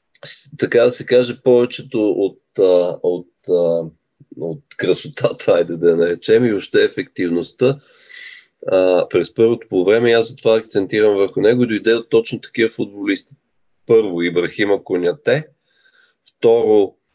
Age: 40-59